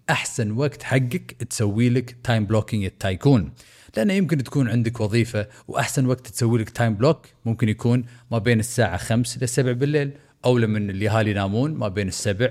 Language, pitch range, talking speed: Arabic, 100-130 Hz, 175 wpm